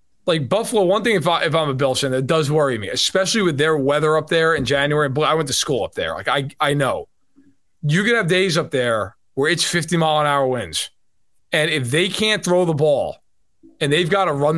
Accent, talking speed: American, 230 wpm